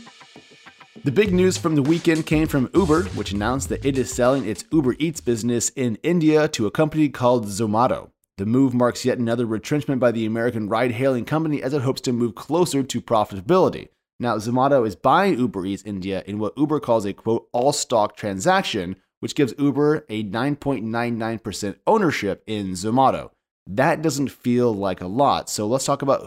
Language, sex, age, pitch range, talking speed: English, male, 30-49, 105-135 Hz, 180 wpm